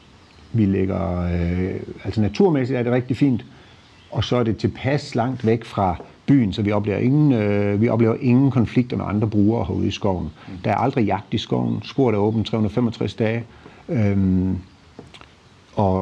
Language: Danish